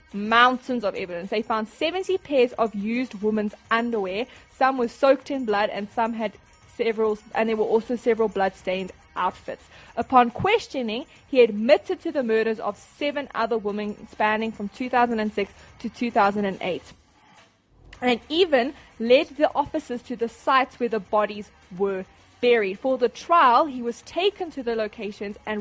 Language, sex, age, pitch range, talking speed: English, female, 20-39, 210-260 Hz, 170 wpm